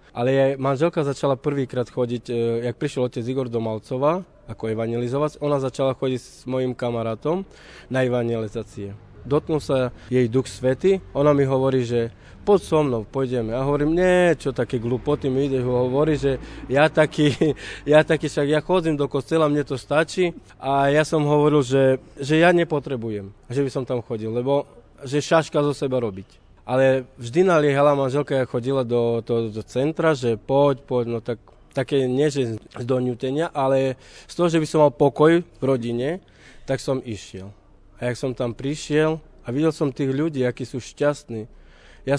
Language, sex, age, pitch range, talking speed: Slovak, male, 20-39, 125-150 Hz, 175 wpm